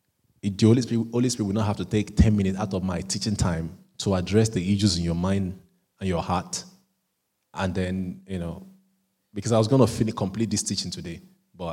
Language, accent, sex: English, Nigerian, male